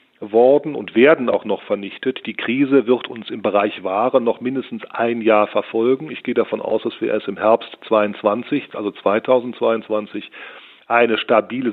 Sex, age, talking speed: male, 40-59, 165 wpm